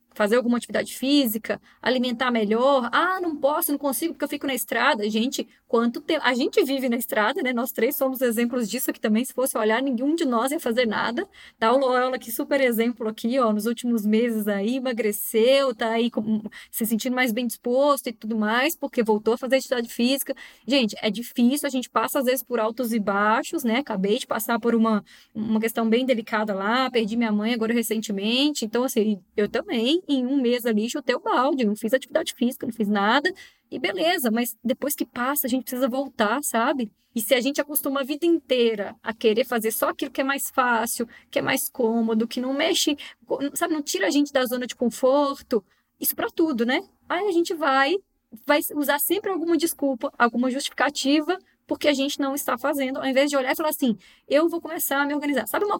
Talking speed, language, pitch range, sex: 210 wpm, Portuguese, 230-285 Hz, female